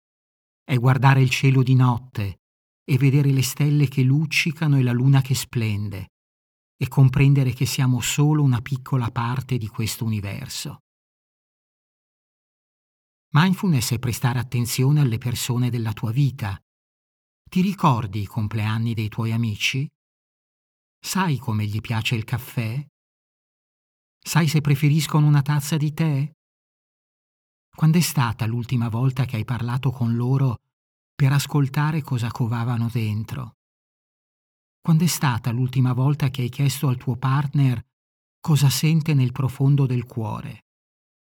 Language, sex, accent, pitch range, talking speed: Italian, male, native, 115-140 Hz, 130 wpm